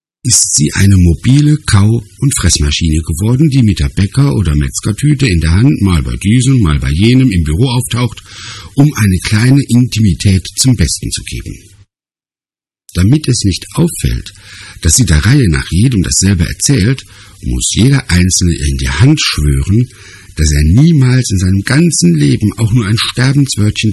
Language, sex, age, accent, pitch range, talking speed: German, male, 60-79, German, 80-110 Hz, 160 wpm